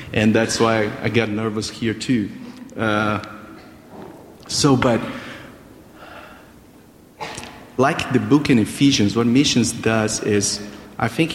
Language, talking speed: English, 120 wpm